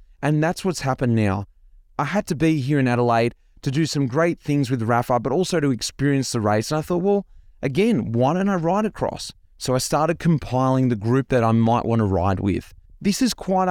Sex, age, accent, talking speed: male, 20-39, Australian, 225 wpm